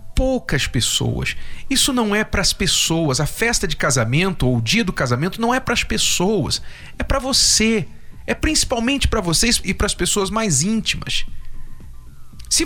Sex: male